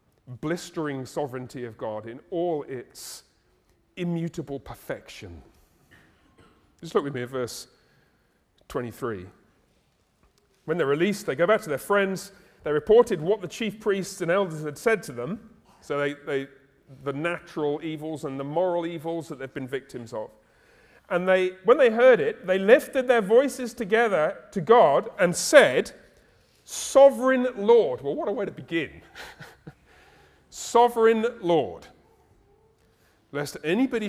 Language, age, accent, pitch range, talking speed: English, 40-59, British, 140-220 Hz, 140 wpm